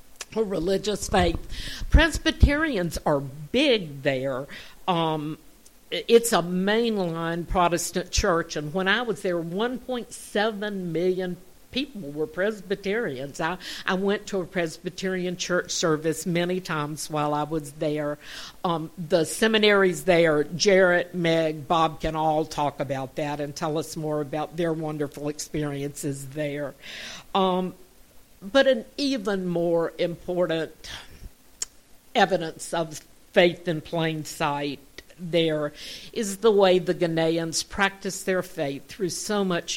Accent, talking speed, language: American, 120 wpm, English